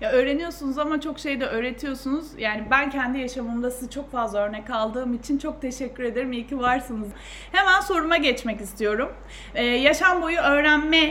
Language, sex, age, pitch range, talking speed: Turkish, female, 30-49, 240-305 Hz, 165 wpm